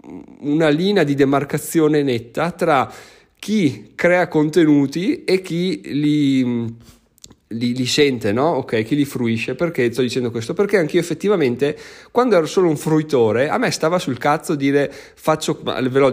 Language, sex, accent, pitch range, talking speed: Italian, male, native, 130-170 Hz, 155 wpm